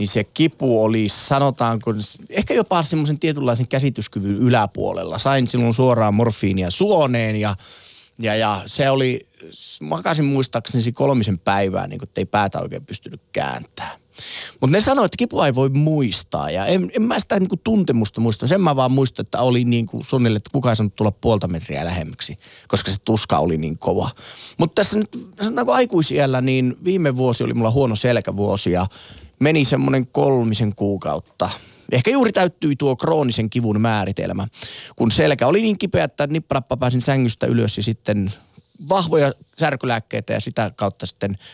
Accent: native